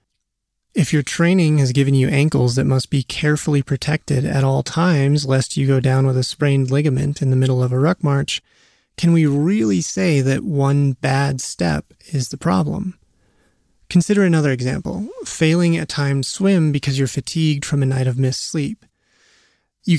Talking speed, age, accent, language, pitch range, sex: 175 wpm, 30-49, American, English, 135-160 Hz, male